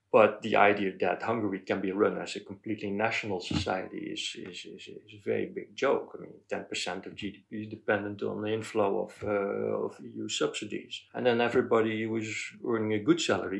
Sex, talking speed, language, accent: male, 200 wpm, Romanian, Dutch